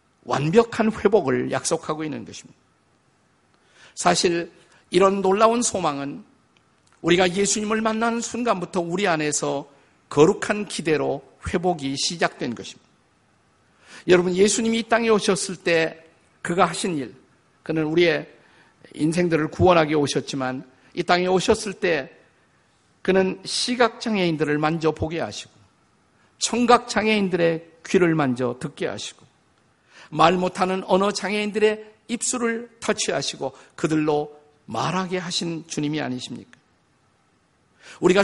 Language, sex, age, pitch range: Korean, male, 50-69, 155-210 Hz